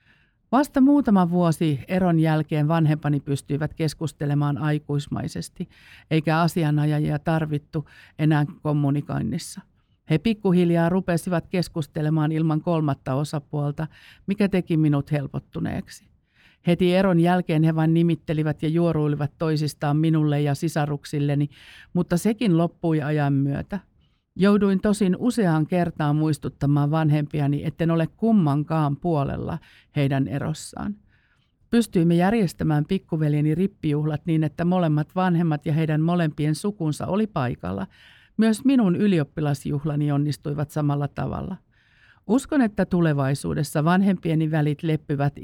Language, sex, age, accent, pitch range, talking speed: Finnish, female, 50-69, native, 145-175 Hz, 105 wpm